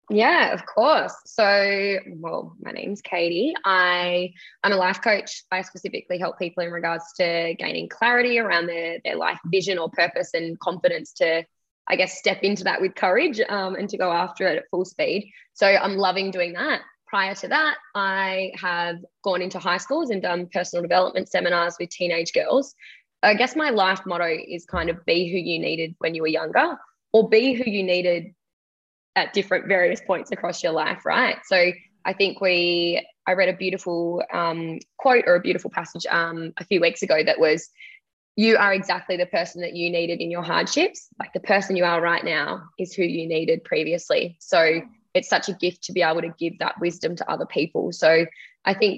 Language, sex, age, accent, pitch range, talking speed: English, female, 20-39, Australian, 170-195 Hz, 195 wpm